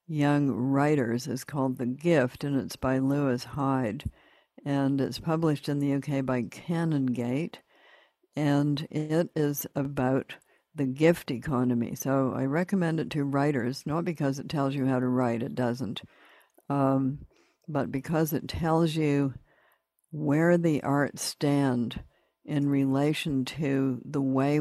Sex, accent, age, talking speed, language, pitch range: female, American, 60-79, 140 wpm, English, 130-150 Hz